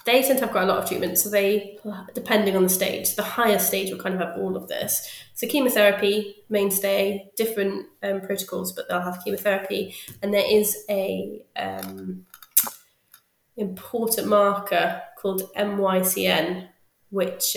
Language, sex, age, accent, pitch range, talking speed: English, female, 20-39, British, 185-210 Hz, 155 wpm